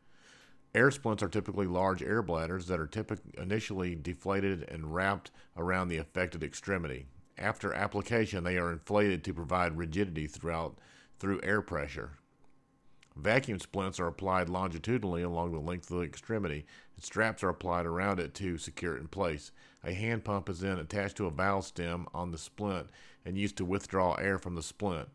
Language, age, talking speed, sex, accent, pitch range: English, 40-59, 170 wpm, male, American, 85-100 Hz